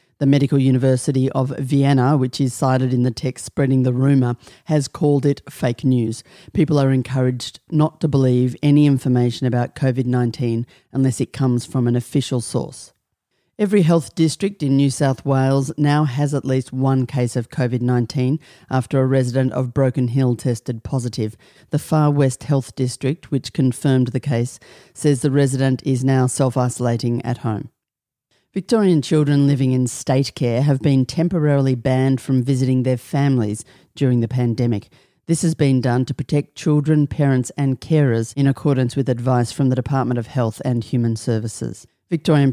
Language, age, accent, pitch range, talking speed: English, 40-59, Australian, 125-140 Hz, 165 wpm